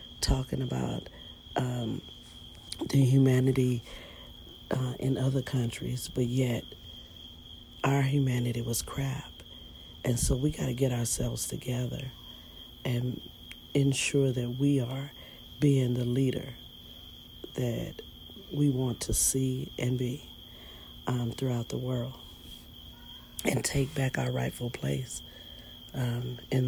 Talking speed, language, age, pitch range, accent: 110 wpm, English, 40-59, 115-135 Hz, American